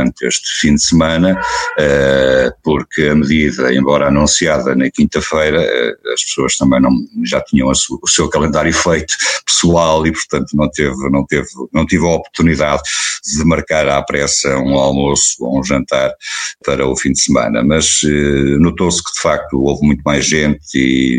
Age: 50-69